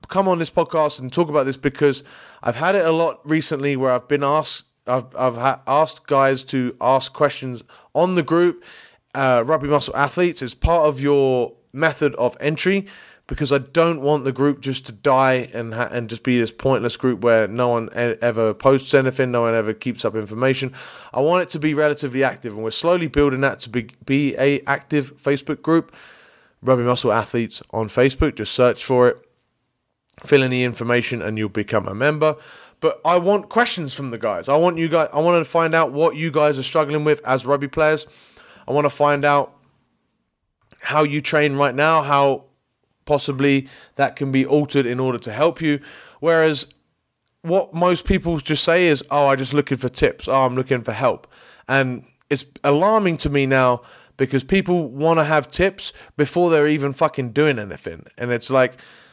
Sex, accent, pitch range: male, British, 125-155 Hz